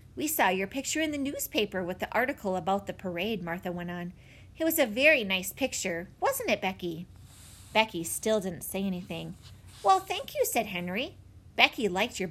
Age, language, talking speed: 30-49, English, 185 wpm